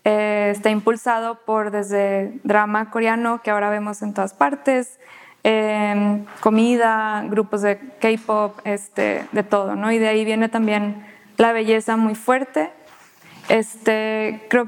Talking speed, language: 135 wpm, Spanish